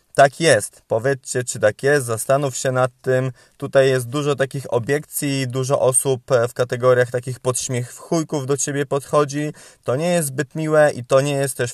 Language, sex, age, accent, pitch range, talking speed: Polish, male, 20-39, native, 125-145 Hz, 180 wpm